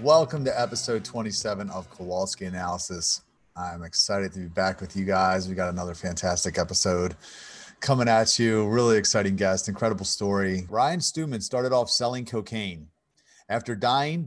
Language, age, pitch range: English, 40-59, 95-120 Hz